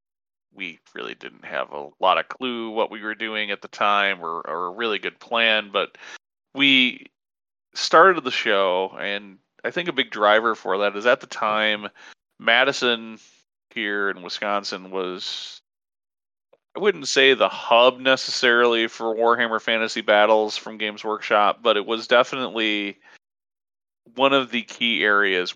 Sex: male